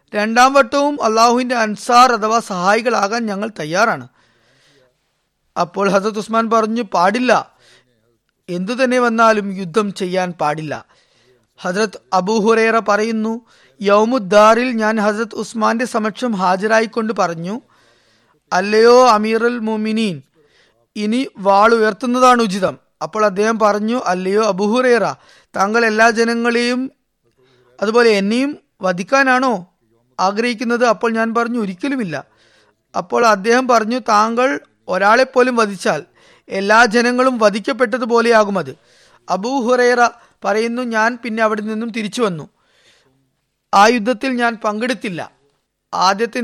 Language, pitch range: Malayalam, 195-235 Hz